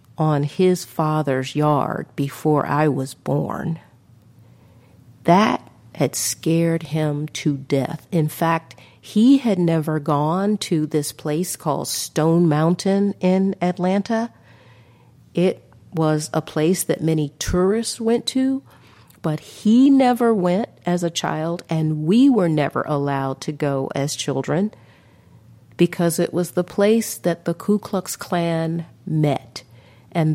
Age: 50-69